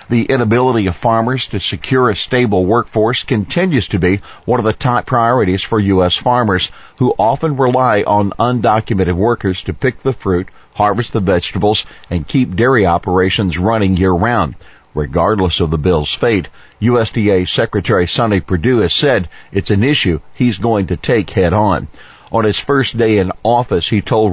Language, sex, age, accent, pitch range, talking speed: English, male, 50-69, American, 95-115 Hz, 165 wpm